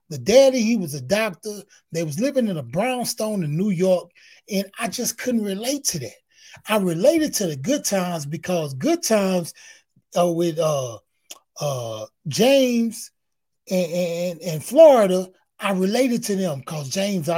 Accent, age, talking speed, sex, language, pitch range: American, 30-49, 160 wpm, male, English, 165-215 Hz